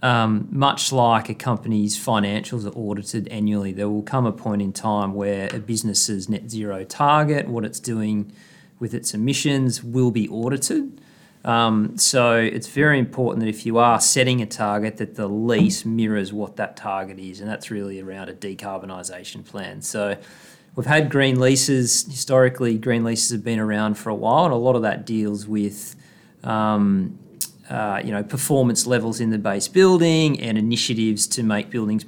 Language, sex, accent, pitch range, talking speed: English, male, Australian, 105-125 Hz, 175 wpm